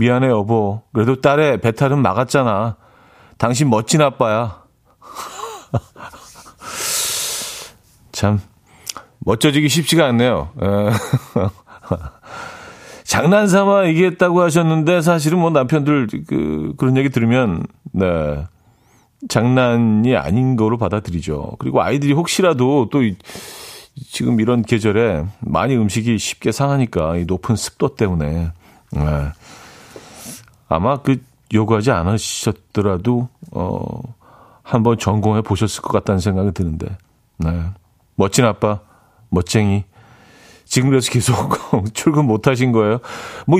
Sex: male